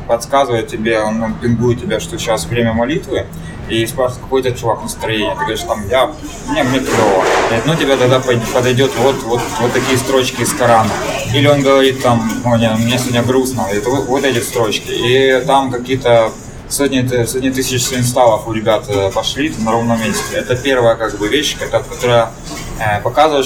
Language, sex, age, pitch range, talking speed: Russian, male, 20-39, 110-130 Hz, 165 wpm